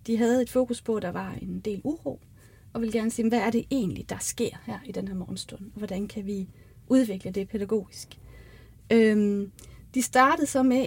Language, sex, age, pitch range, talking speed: Danish, female, 30-49, 205-255 Hz, 205 wpm